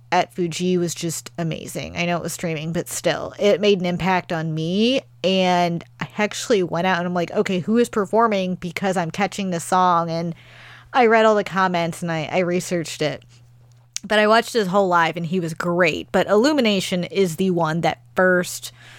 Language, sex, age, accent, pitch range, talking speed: English, female, 30-49, American, 160-195 Hz, 200 wpm